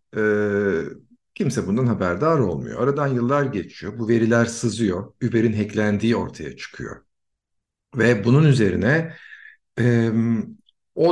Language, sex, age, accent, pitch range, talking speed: Turkish, male, 50-69, native, 100-135 Hz, 110 wpm